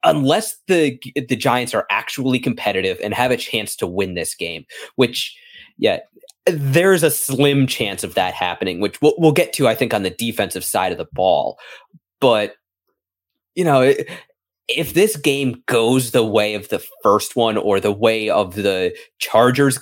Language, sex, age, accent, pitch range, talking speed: English, male, 20-39, American, 110-175 Hz, 175 wpm